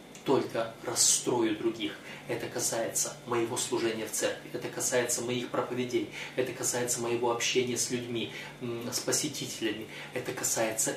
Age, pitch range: 30-49, 125-165 Hz